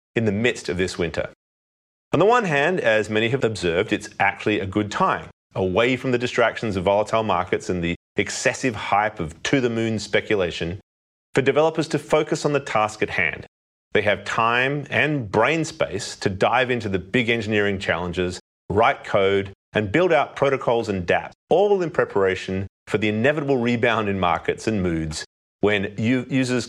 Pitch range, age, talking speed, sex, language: 95-130 Hz, 30-49, 170 wpm, male, English